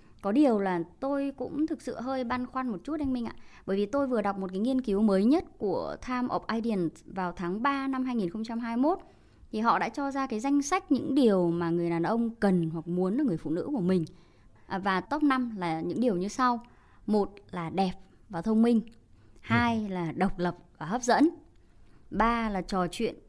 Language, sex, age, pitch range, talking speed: Vietnamese, male, 20-39, 180-265 Hz, 215 wpm